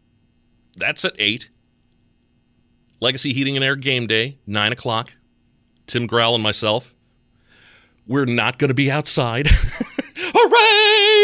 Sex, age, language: male, 40-59, English